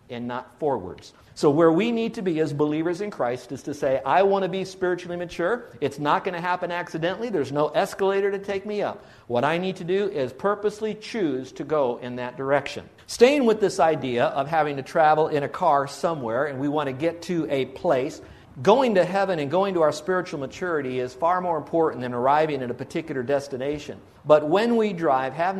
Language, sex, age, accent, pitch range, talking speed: English, male, 50-69, American, 130-180 Hz, 215 wpm